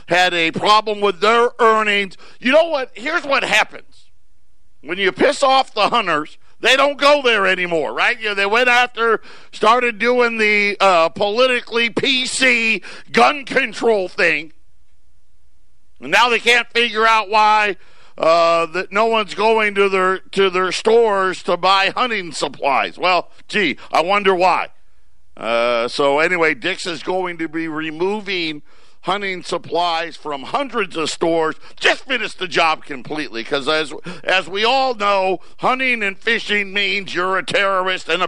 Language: English